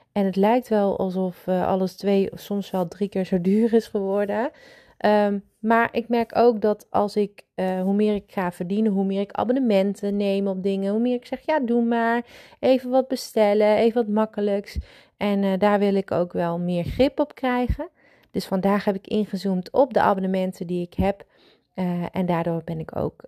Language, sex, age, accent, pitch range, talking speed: Dutch, female, 30-49, Dutch, 175-215 Hz, 200 wpm